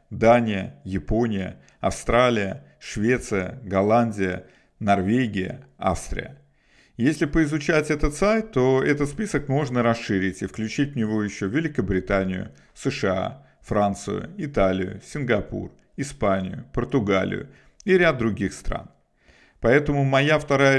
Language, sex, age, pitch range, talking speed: Russian, male, 50-69, 100-135 Hz, 100 wpm